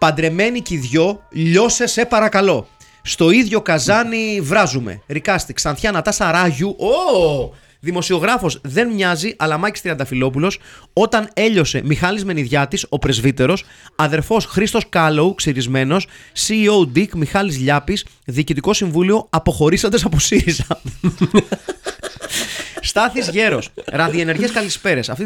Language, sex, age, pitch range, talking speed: Greek, male, 30-49, 130-190 Hz, 100 wpm